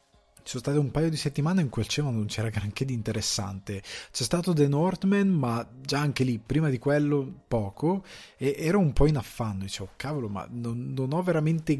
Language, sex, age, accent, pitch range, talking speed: Italian, male, 20-39, native, 110-145 Hz, 205 wpm